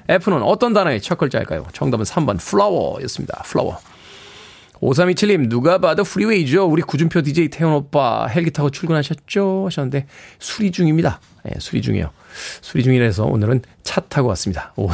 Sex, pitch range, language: male, 130-190 Hz, Korean